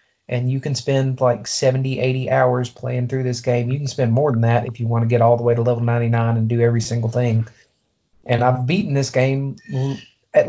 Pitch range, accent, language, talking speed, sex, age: 120-140 Hz, American, English, 230 wpm, male, 30-49